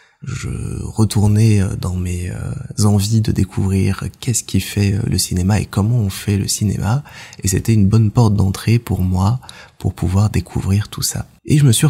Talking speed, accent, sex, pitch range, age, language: 175 wpm, French, male, 95-120 Hz, 20-39, French